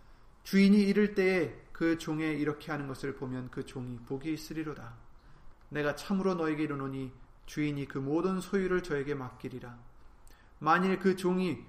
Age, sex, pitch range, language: 30-49, male, 125-170 Hz, Korean